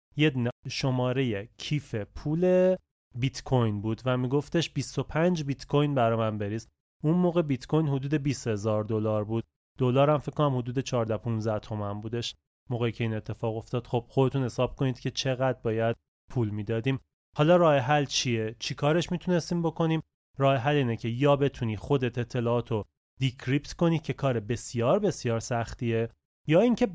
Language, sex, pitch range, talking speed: Persian, male, 115-150 Hz, 155 wpm